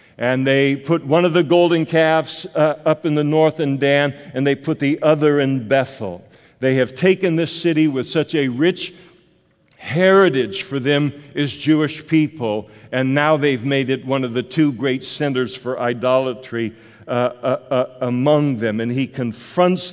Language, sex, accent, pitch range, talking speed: English, male, American, 125-150 Hz, 175 wpm